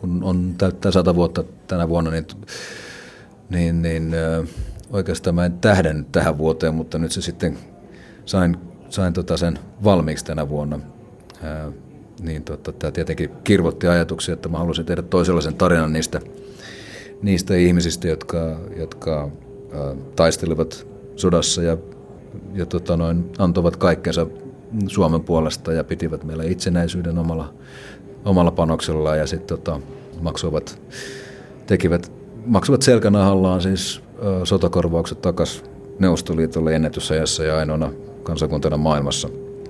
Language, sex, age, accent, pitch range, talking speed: Finnish, male, 40-59, native, 80-95 Hz, 120 wpm